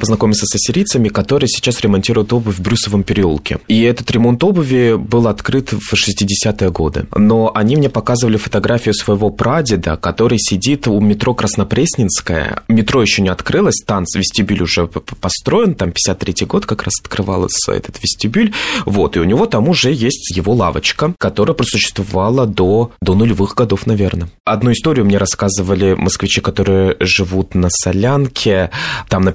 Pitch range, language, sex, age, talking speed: 95-120 Hz, Russian, male, 20-39, 150 wpm